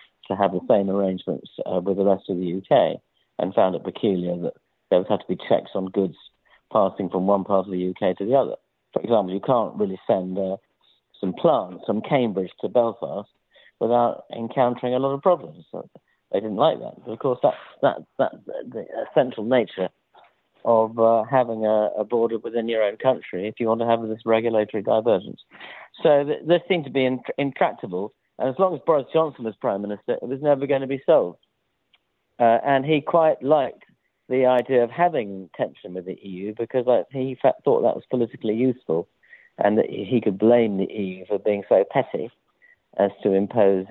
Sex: male